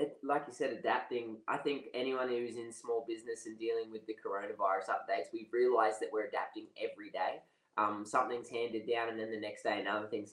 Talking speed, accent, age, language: 205 wpm, Australian, 20-39, English